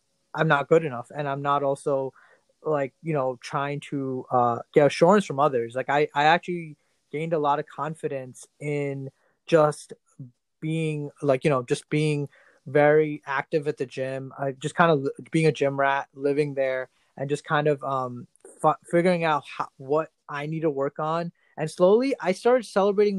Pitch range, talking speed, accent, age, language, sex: 135-155 Hz, 175 wpm, American, 20-39, English, male